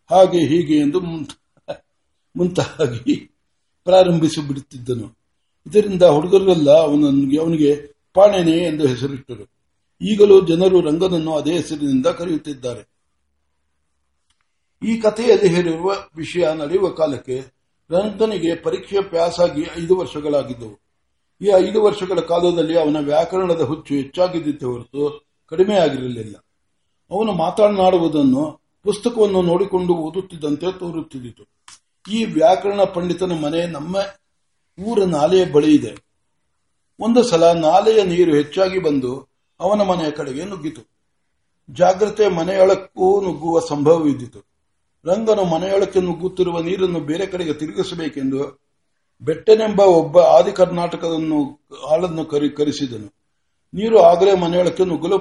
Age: 60-79